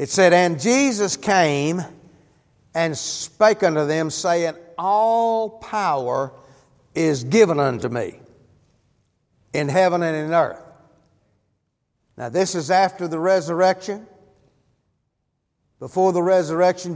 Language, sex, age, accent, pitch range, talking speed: English, male, 50-69, American, 155-190 Hz, 105 wpm